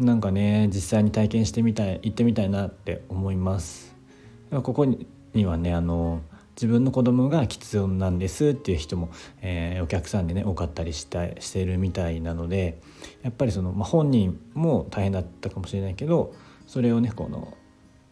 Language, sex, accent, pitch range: Japanese, male, native, 85-110 Hz